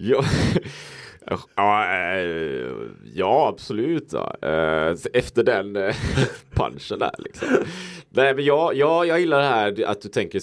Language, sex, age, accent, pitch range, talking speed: Swedish, male, 30-49, Norwegian, 90-130 Hz, 120 wpm